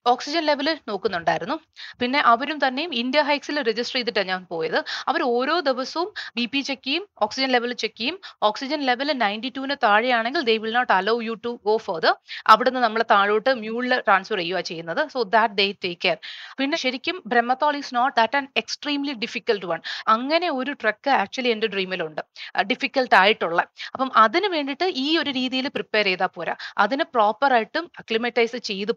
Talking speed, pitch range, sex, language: 165 wpm, 215-275 Hz, female, Malayalam